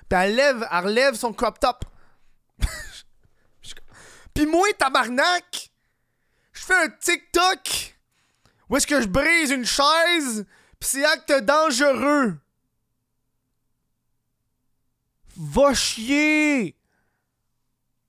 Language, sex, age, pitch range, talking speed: French, male, 20-39, 125-200 Hz, 90 wpm